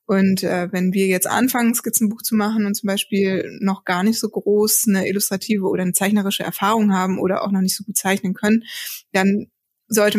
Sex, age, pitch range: female, 20-39, 190-220 Hz